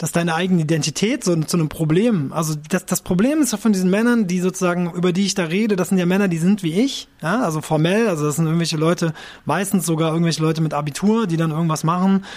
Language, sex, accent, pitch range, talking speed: German, male, German, 155-190 Hz, 240 wpm